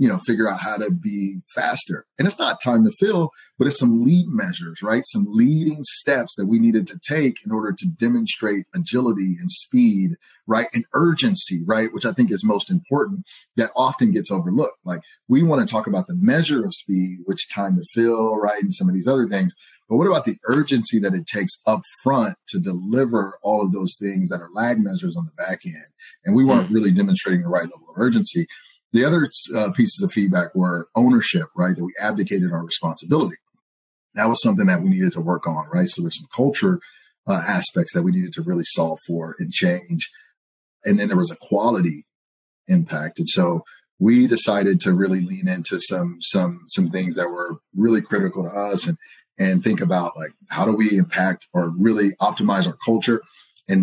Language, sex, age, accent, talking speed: English, male, 30-49, American, 200 wpm